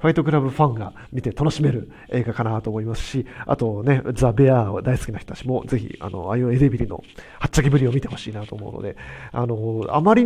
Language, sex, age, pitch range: Japanese, male, 40-59, 115-155 Hz